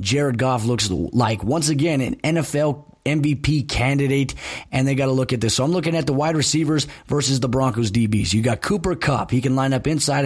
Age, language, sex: 30-49, English, male